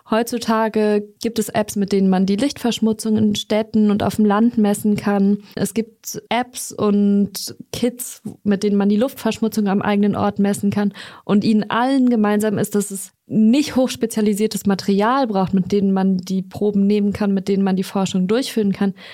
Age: 20-39